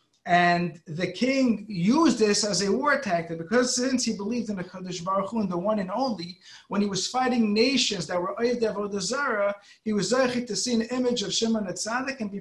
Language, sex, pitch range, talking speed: English, male, 190-235 Hz, 210 wpm